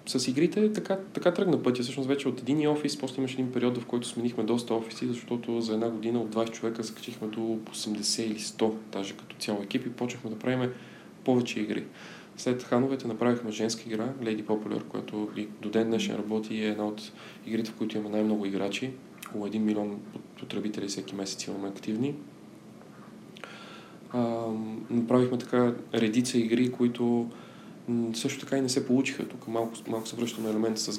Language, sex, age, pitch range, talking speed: Bulgarian, male, 20-39, 110-120 Hz, 180 wpm